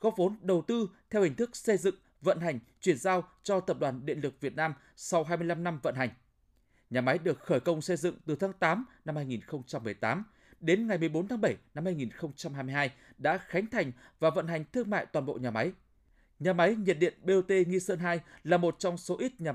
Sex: male